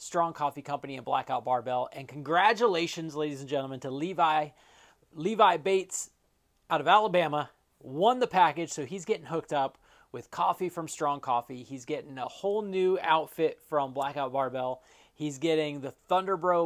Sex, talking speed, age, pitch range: male, 160 wpm, 30-49, 140-180 Hz